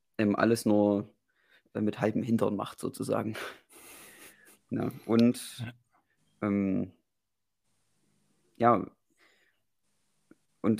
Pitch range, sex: 100-120 Hz, male